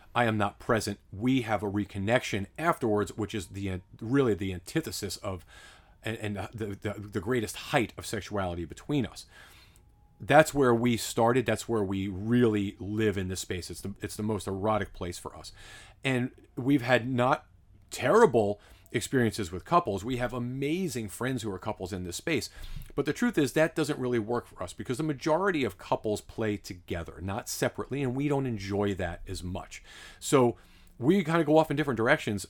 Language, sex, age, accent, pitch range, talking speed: English, male, 40-59, American, 100-130 Hz, 185 wpm